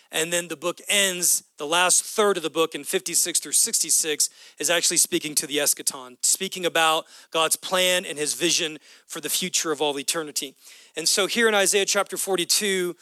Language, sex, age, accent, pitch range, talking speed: English, male, 40-59, American, 170-230 Hz, 190 wpm